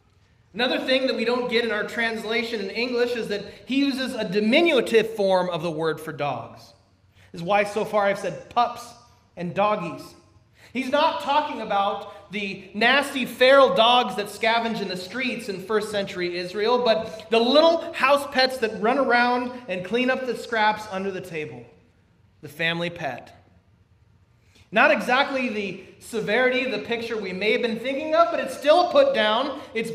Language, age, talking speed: English, 30-49, 175 wpm